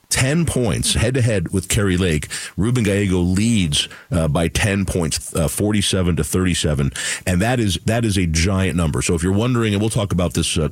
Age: 50-69